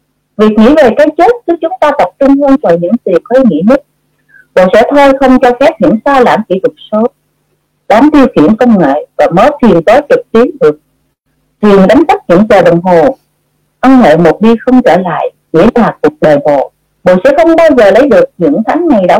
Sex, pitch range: female, 195-285 Hz